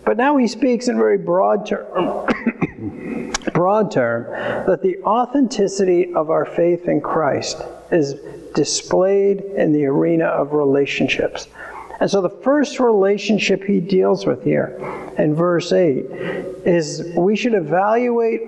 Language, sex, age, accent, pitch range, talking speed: English, male, 50-69, American, 165-210 Hz, 130 wpm